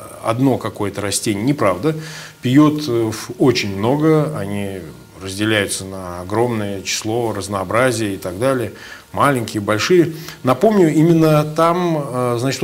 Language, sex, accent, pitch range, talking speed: Russian, male, native, 105-150 Hz, 105 wpm